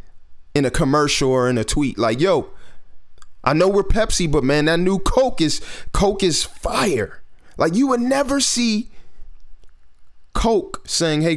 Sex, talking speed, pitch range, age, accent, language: male, 160 wpm, 110-175 Hz, 30-49, American, English